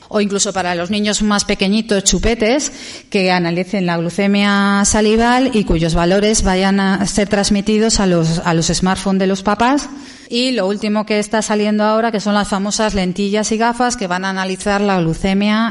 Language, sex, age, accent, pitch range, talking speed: Spanish, female, 40-59, Spanish, 180-215 Hz, 185 wpm